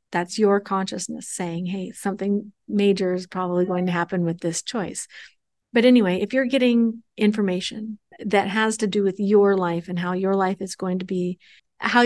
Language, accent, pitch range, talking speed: English, American, 185-220 Hz, 185 wpm